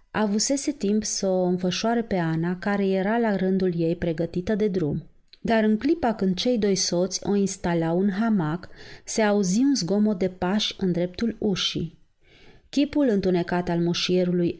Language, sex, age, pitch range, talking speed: Romanian, female, 30-49, 180-225 Hz, 160 wpm